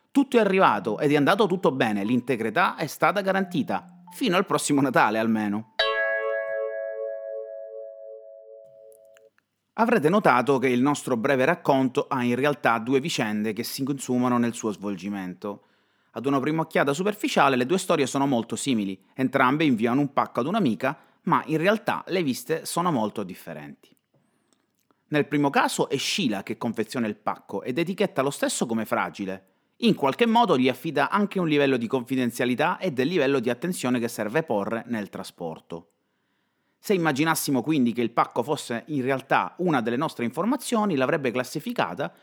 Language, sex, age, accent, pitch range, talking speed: Italian, male, 30-49, native, 110-180 Hz, 155 wpm